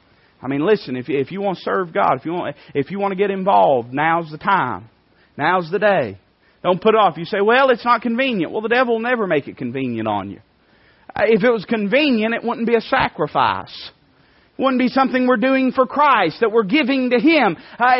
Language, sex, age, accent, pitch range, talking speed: English, male, 30-49, American, 170-240 Hz, 210 wpm